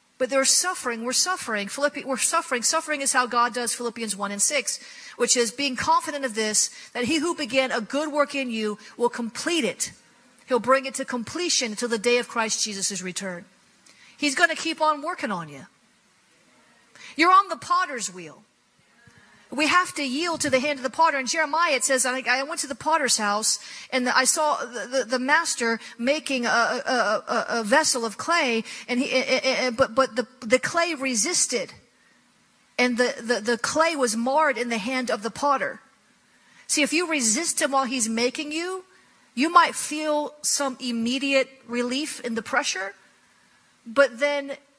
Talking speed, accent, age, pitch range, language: 185 wpm, American, 40-59, 240-305 Hz, English